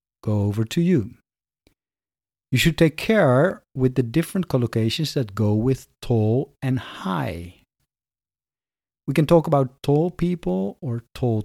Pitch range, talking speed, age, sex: 115-150 Hz, 130 wpm, 50-69, male